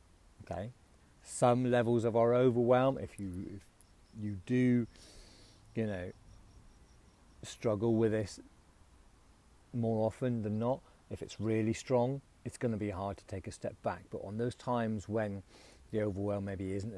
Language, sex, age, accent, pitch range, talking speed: English, male, 40-59, British, 95-115 Hz, 150 wpm